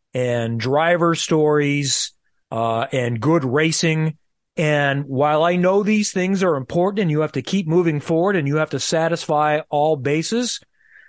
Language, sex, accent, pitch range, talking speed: English, male, American, 140-195 Hz, 155 wpm